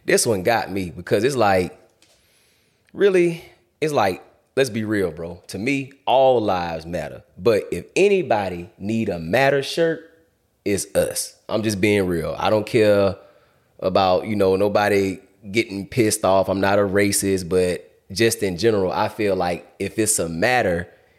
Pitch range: 100-160 Hz